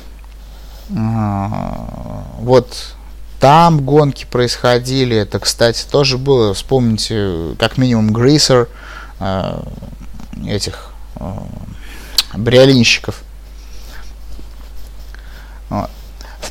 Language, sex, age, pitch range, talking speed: Russian, male, 30-49, 95-140 Hz, 70 wpm